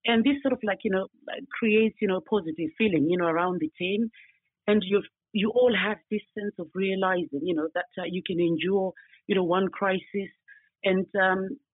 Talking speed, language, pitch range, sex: 190 wpm, English, 190-230 Hz, female